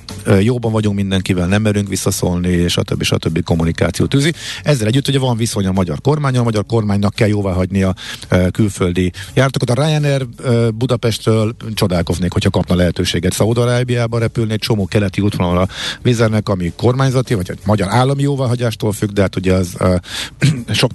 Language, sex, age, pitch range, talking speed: Hungarian, male, 50-69, 95-120 Hz, 160 wpm